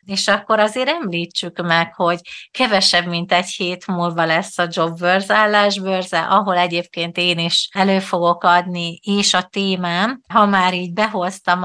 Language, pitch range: Hungarian, 175-200 Hz